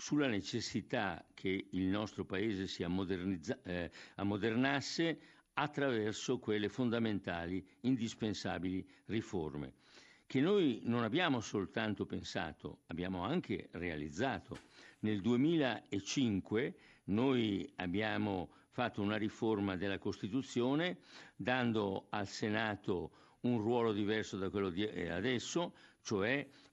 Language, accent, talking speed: Italian, native, 95 wpm